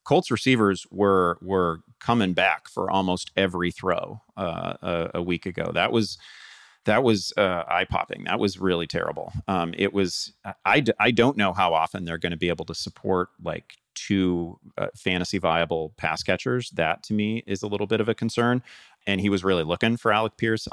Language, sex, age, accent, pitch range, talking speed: English, male, 40-59, American, 85-100 Hz, 195 wpm